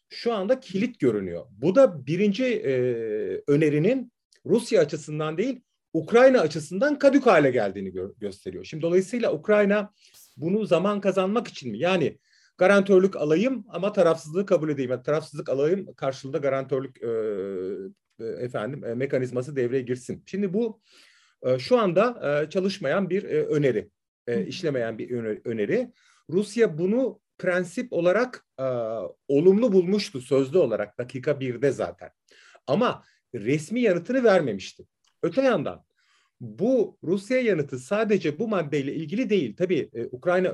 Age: 40-59